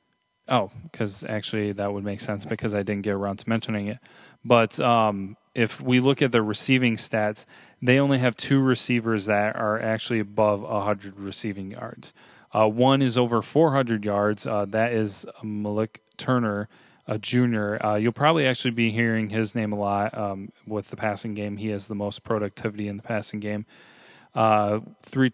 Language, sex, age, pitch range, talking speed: English, male, 20-39, 105-120 Hz, 180 wpm